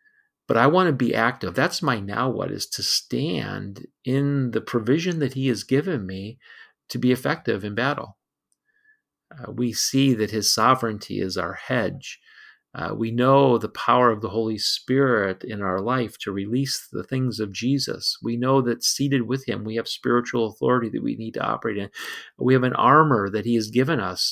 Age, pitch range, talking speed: 40-59, 110-135 Hz, 190 wpm